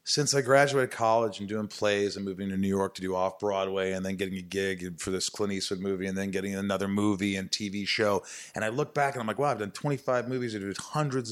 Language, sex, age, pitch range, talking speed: English, male, 30-49, 100-135 Hz, 260 wpm